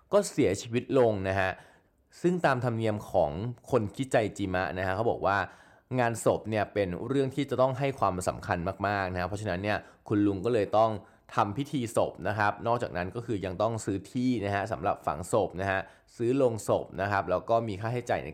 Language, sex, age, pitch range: Thai, male, 20-39, 100-125 Hz